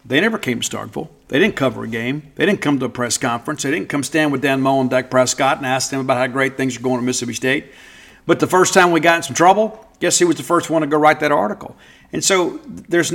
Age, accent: 50-69, American